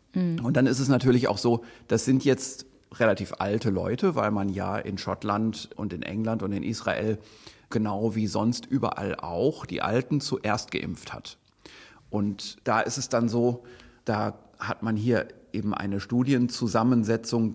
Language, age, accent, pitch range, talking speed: German, 40-59, German, 105-125 Hz, 160 wpm